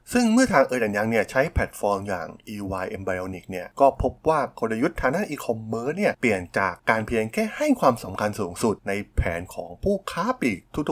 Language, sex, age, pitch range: Thai, male, 20-39, 100-140 Hz